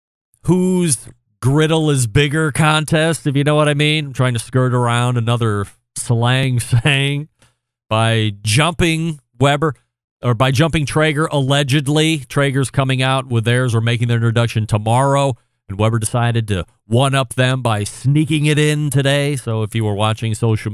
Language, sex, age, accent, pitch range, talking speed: English, male, 40-59, American, 110-130 Hz, 155 wpm